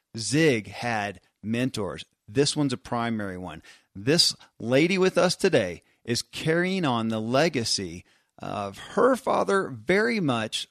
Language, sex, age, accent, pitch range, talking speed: English, male, 40-59, American, 110-160 Hz, 130 wpm